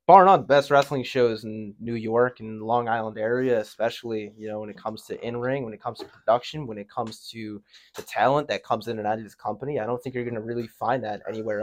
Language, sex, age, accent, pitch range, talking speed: English, male, 20-39, American, 105-125 Hz, 260 wpm